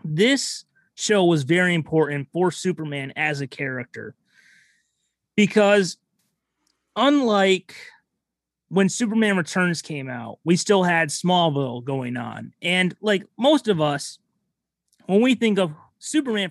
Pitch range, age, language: 150-205 Hz, 30-49, English